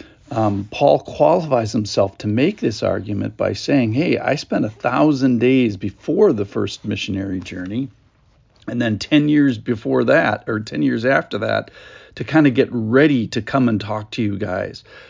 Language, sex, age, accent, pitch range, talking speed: English, male, 50-69, American, 105-125 Hz, 175 wpm